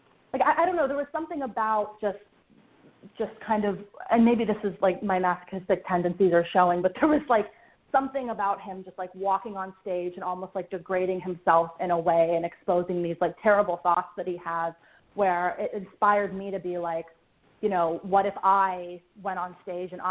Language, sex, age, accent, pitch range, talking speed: English, female, 30-49, American, 180-215 Hz, 205 wpm